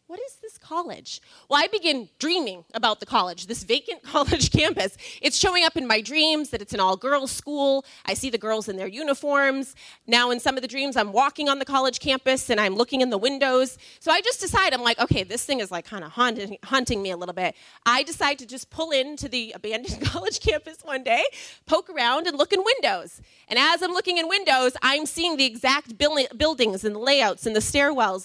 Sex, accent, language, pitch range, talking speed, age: female, American, English, 235-315 Hz, 220 wpm, 30-49